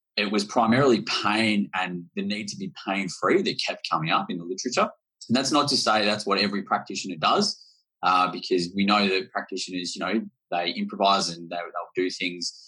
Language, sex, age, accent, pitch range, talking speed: English, male, 20-39, Australian, 85-105 Hz, 195 wpm